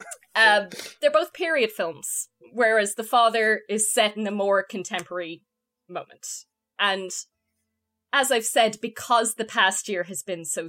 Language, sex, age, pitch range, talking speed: English, female, 10-29, 180-230 Hz, 150 wpm